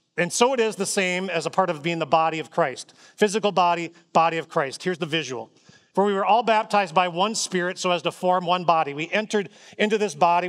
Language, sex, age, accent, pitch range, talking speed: English, male, 40-59, American, 165-215 Hz, 240 wpm